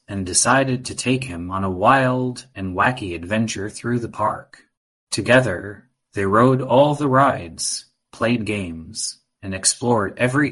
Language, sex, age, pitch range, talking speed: English, male, 30-49, 95-130 Hz, 145 wpm